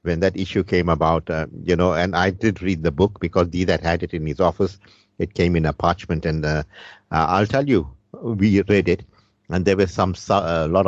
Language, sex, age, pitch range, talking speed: English, male, 50-69, 95-120 Hz, 225 wpm